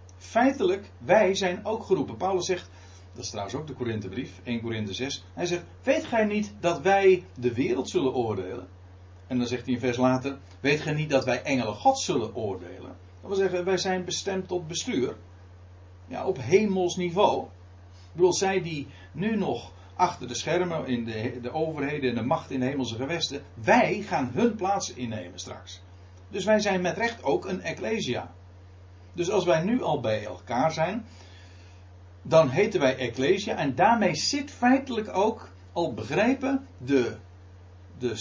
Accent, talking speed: Dutch, 170 wpm